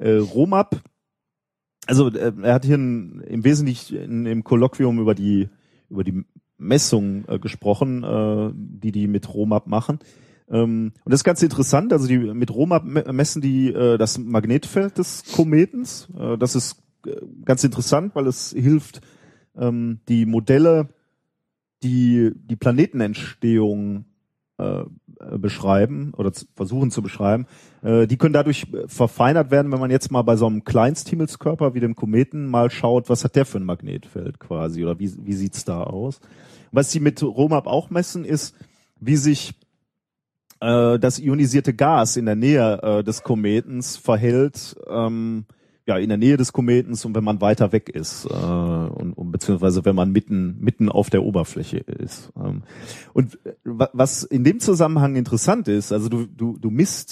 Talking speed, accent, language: 160 wpm, German, German